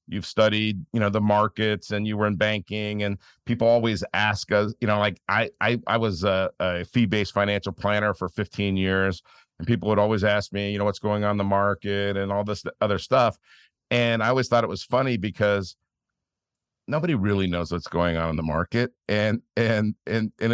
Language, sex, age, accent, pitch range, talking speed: English, male, 50-69, American, 100-115 Hz, 205 wpm